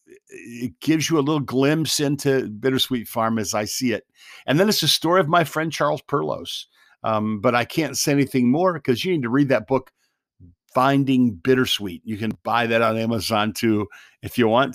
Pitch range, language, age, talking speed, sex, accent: 115-140 Hz, English, 50-69, 200 wpm, male, American